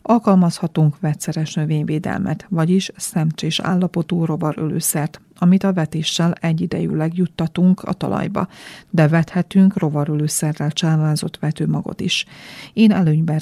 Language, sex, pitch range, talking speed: Hungarian, female, 160-180 Hz, 100 wpm